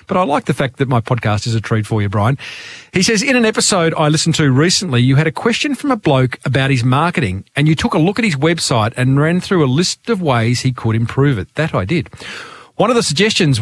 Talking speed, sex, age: 260 wpm, male, 40-59